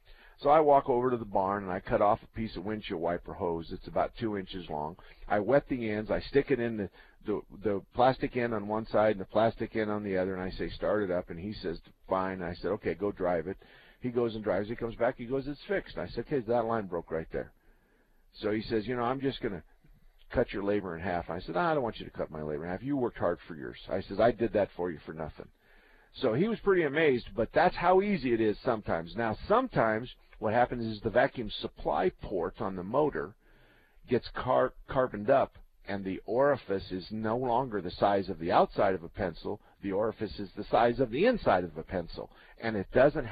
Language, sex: English, male